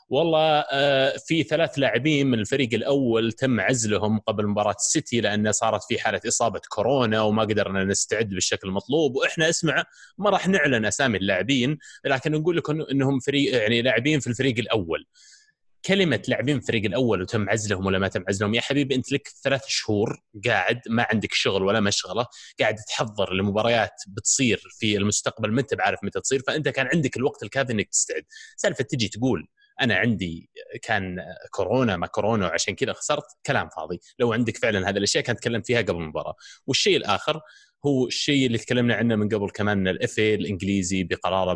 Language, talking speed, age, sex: Arabic, 170 wpm, 20-39, male